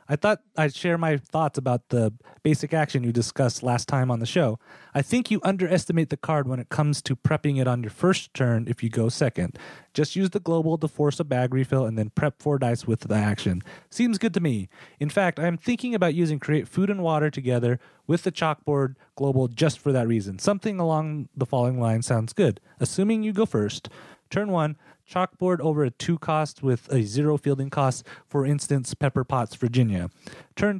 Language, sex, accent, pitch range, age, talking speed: English, male, American, 125-165 Hz, 30-49, 205 wpm